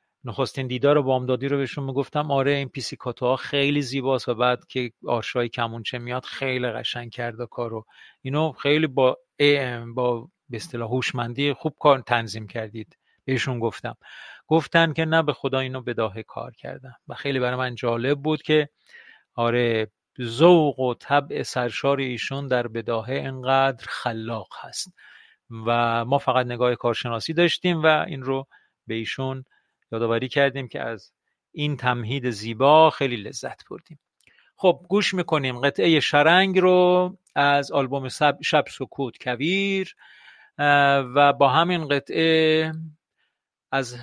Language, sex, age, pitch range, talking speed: Persian, male, 40-59, 125-155 Hz, 140 wpm